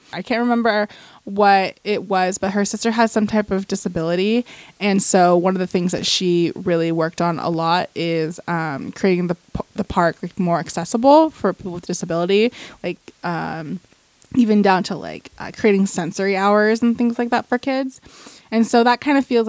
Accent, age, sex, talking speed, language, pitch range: American, 20-39, female, 190 wpm, English, 170-210 Hz